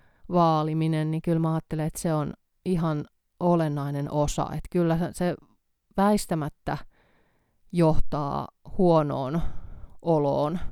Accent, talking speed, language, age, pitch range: native, 100 wpm, Finnish, 30-49, 150-175 Hz